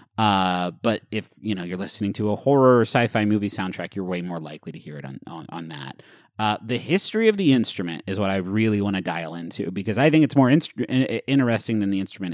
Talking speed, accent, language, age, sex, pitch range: 240 wpm, American, English, 30-49, male, 100-135 Hz